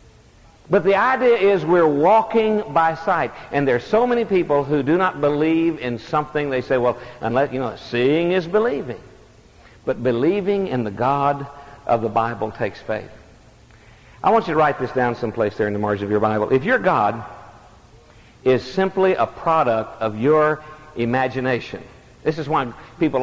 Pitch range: 115-180 Hz